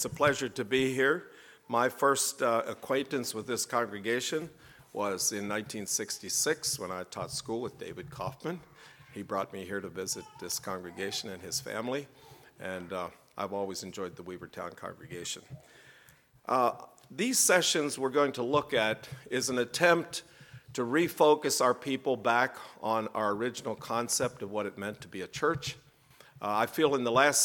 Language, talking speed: English, 165 wpm